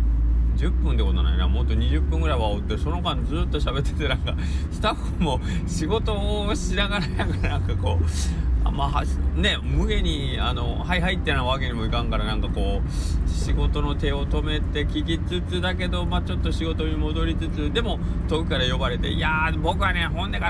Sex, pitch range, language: male, 65-90 Hz, Japanese